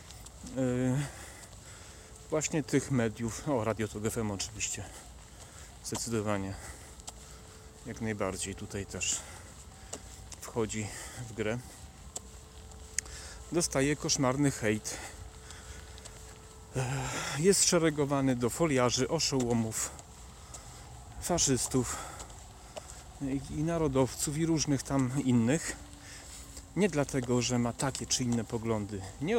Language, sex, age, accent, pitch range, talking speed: Polish, male, 40-59, native, 95-135 Hz, 80 wpm